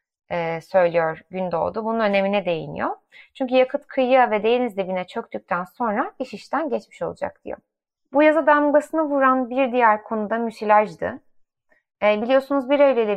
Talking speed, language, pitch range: 145 wpm, Turkish, 210-275 Hz